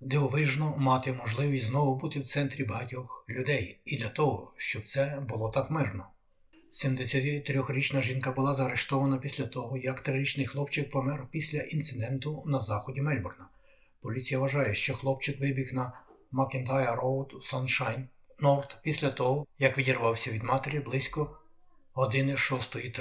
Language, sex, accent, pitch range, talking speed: Ukrainian, male, native, 130-145 Hz, 130 wpm